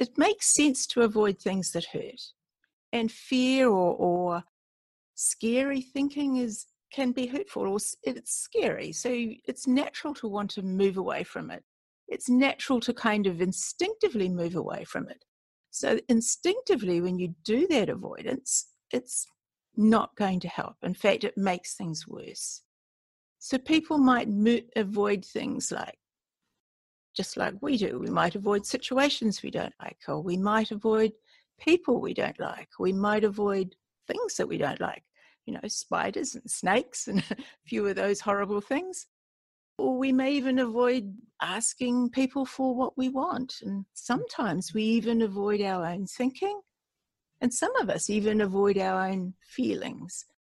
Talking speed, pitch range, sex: 160 wpm, 200-260 Hz, female